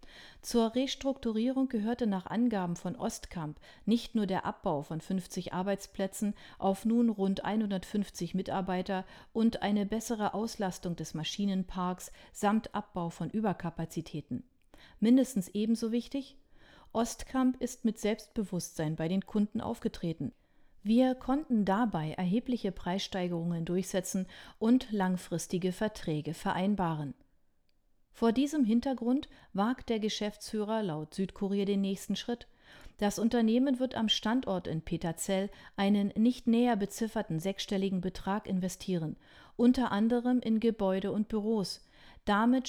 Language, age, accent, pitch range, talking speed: German, 40-59, German, 185-230 Hz, 115 wpm